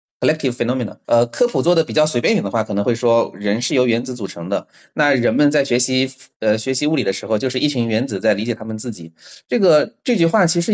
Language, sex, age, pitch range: Chinese, male, 20-39, 115-180 Hz